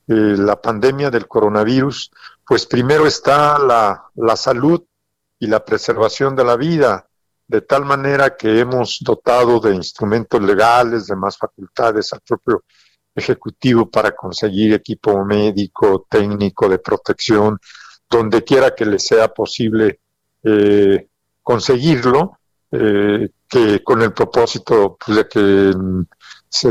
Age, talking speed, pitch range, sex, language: 50-69, 125 wpm, 105-135 Hz, male, Spanish